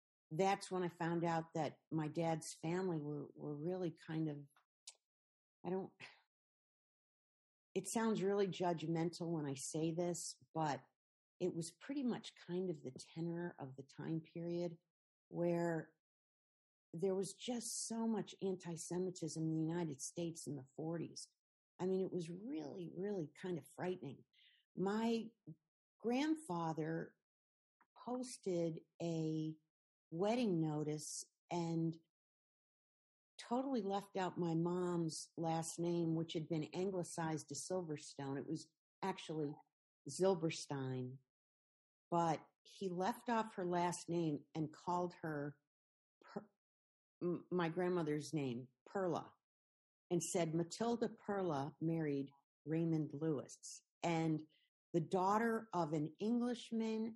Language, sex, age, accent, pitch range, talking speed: English, female, 50-69, American, 155-185 Hz, 115 wpm